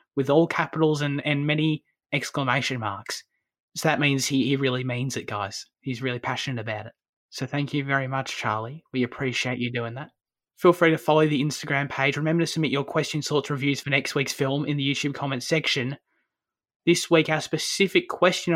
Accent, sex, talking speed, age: Australian, male, 195 wpm, 20-39